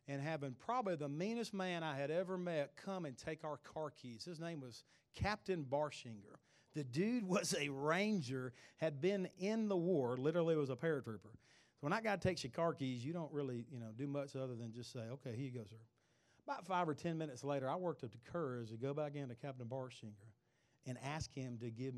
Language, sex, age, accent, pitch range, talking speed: English, male, 40-59, American, 120-160 Hz, 225 wpm